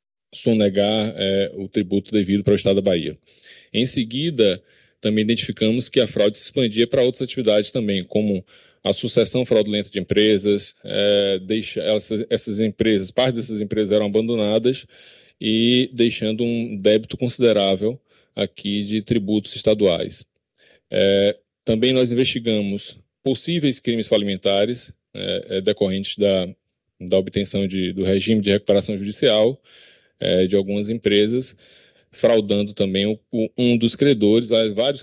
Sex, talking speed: male, 130 wpm